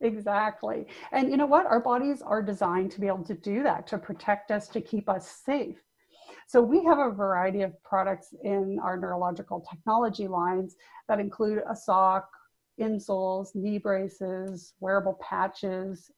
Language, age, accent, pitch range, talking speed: English, 40-59, American, 190-235 Hz, 160 wpm